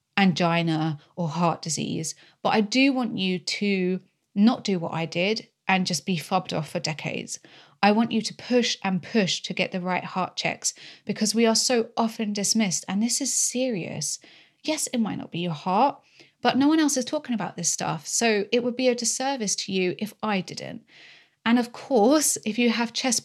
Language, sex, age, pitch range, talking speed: English, female, 30-49, 180-235 Hz, 205 wpm